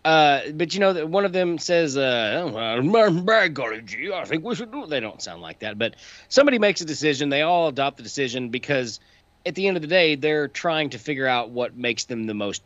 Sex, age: male, 30-49